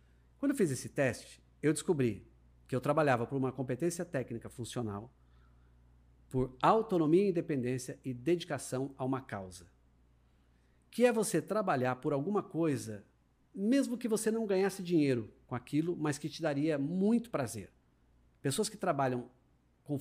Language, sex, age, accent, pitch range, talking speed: Portuguese, male, 50-69, Brazilian, 125-195 Hz, 145 wpm